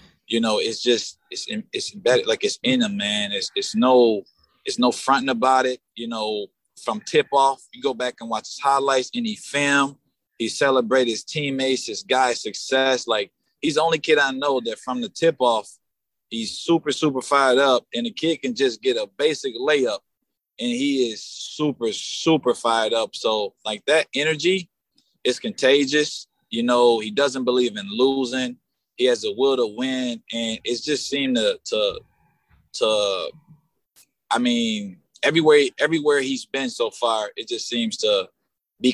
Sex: male